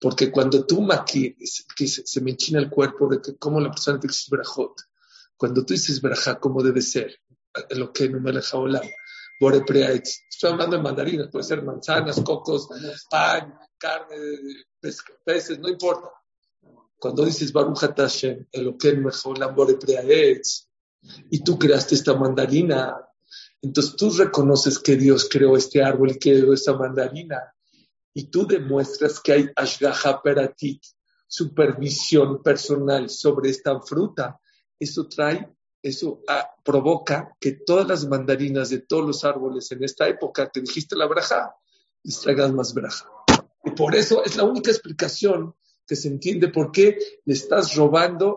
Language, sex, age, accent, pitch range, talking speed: English, male, 50-69, Mexican, 135-185 Hz, 150 wpm